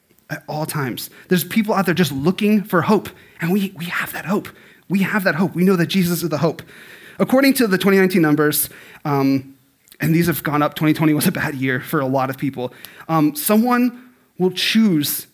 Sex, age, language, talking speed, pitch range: male, 30-49, English, 205 wpm, 150-185 Hz